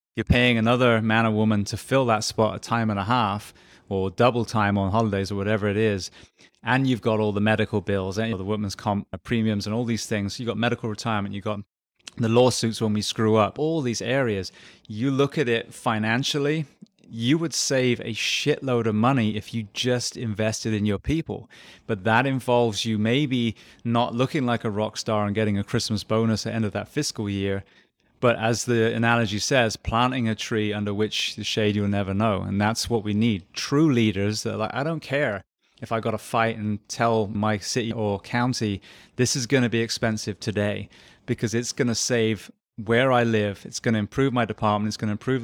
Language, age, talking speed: English, 20-39, 210 wpm